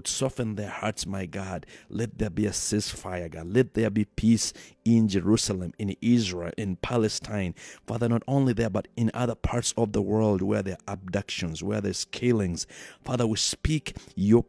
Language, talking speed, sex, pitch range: English, 180 wpm, male, 90-110 Hz